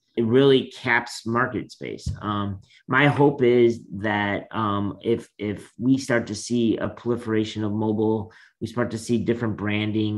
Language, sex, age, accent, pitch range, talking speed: English, male, 30-49, American, 100-115 Hz, 160 wpm